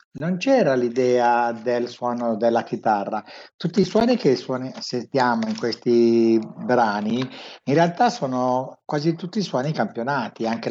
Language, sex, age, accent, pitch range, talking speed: Italian, male, 60-79, native, 115-150 Hz, 135 wpm